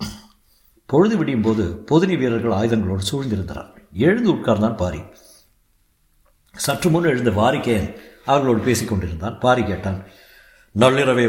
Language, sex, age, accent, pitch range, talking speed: Tamil, male, 60-79, native, 105-130 Hz, 100 wpm